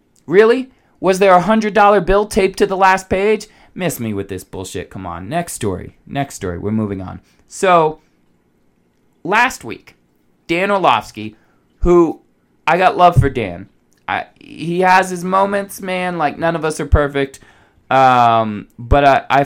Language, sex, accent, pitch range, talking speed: English, male, American, 110-175 Hz, 155 wpm